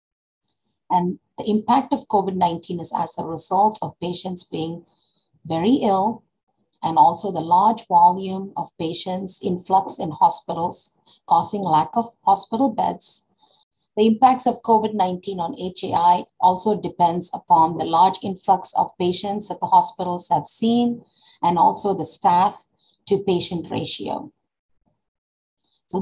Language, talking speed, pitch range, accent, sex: English, 130 wpm, 175-220 Hz, Indian, female